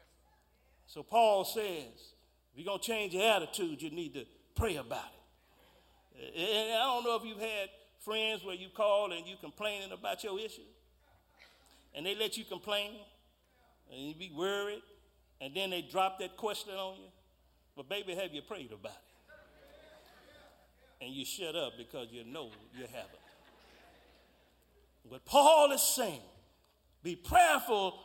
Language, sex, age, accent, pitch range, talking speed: English, male, 50-69, American, 175-260 Hz, 155 wpm